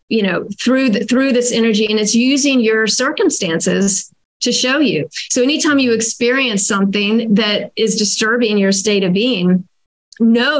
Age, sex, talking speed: 40-59, female, 160 wpm